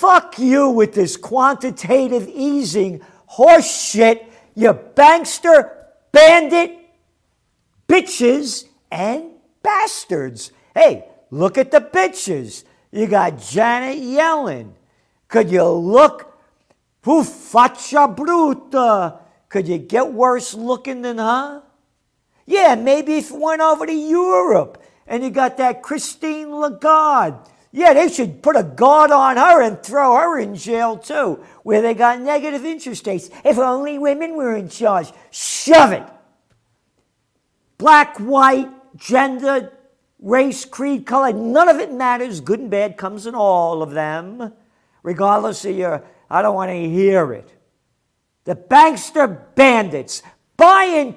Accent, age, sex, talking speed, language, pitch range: American, 50-69, male, 130 wpm, English, 220-305 Hz